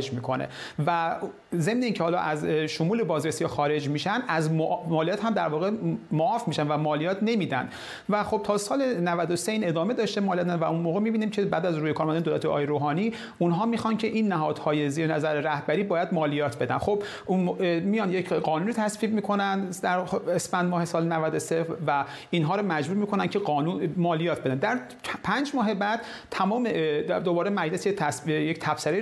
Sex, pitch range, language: male, 155-200 Hz, Persian